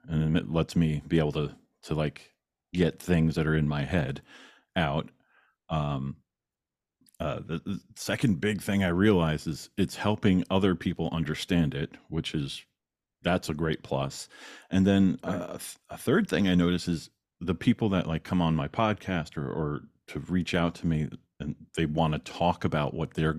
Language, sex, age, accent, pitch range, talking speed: English, male, 40-59, American, 75-95 Hz, 185 wpm